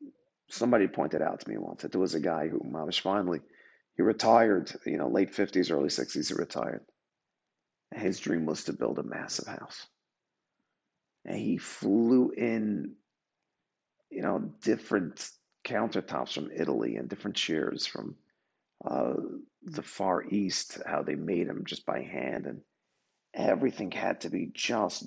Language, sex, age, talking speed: English, male, 40-59, 155 wpm